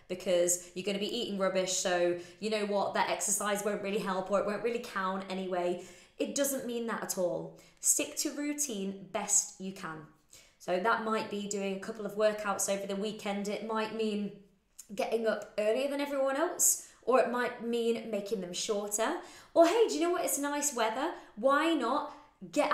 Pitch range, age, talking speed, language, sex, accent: 195-255 Hz, 20-39, 195 wpm, English, female, British